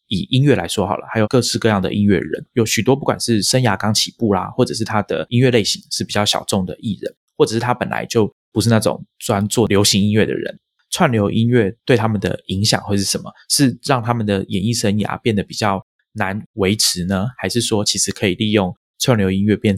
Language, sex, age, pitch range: Chinese, male, 20-39, 95-115 Hz